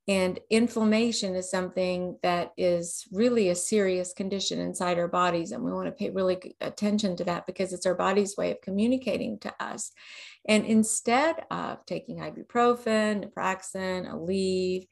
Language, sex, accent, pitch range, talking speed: English, female, American, 185-225 Hz, 155 wpm